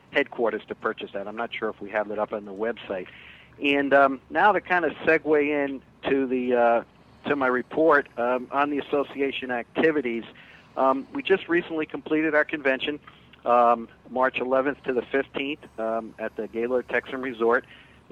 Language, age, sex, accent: English, 50-69, male, American